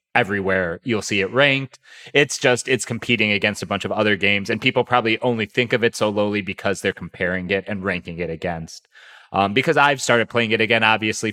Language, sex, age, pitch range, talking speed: English, male, 30-49, 100-125 Hz, 210 wpm